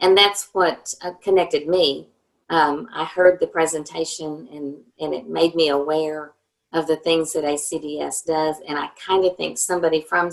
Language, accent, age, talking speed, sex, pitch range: English, American, 50-69, 170 wpm, female, 150-175 Hz